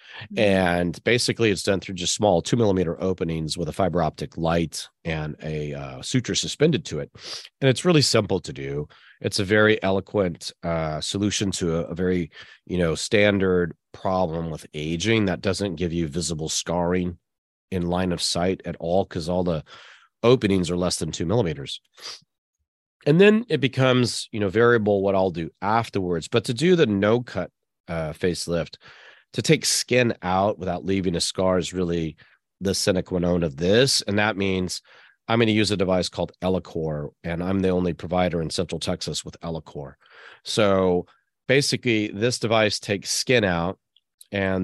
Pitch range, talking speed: 85-105 Hz, 170 wpm